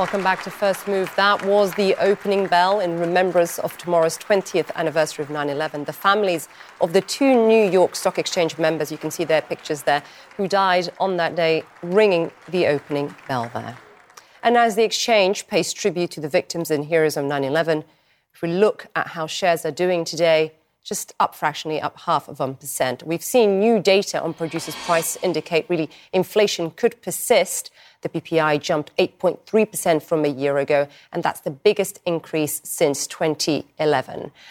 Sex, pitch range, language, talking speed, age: female, 155-200 Hz, English, 175 wpm, 30-49